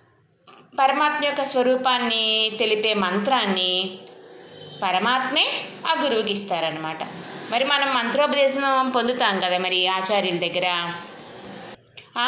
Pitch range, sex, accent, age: 185-260 Hz, female, native, 20-39